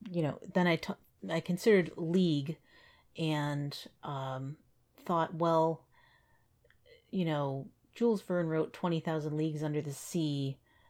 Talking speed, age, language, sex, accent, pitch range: 115 wpm, 40-59, English, female, American, 140-165 Hz